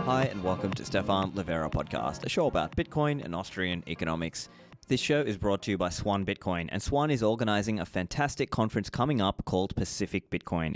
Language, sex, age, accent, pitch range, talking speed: English, male, 20-39, Australian, 95-115 Hz, 195 wpm